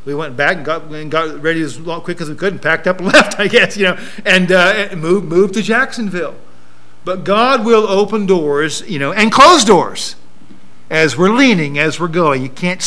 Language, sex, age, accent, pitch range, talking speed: English, male, 50-69, American, 115-195 Hz, 220 wpm